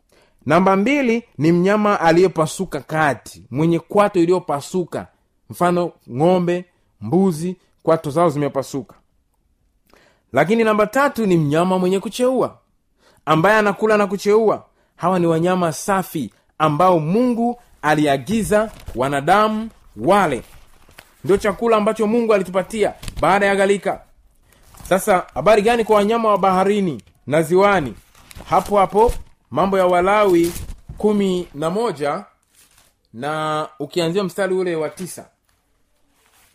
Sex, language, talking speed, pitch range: male, Swahili, 105 wpm, 150-205 Hz